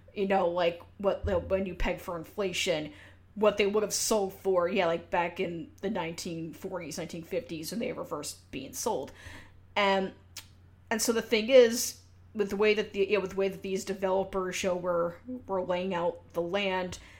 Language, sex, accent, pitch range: English, female, American, 170-205 Hz